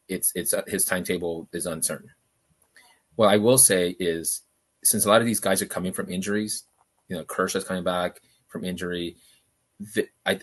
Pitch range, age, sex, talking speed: 90-105 Hz, 30-49, male, 180 wpm